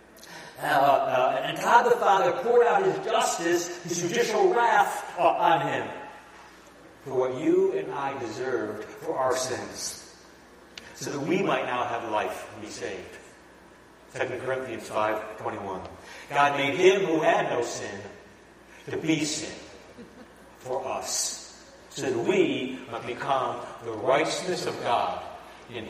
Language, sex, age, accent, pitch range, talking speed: English, male, 60-79, American, 155-245 Hz, 140 wpm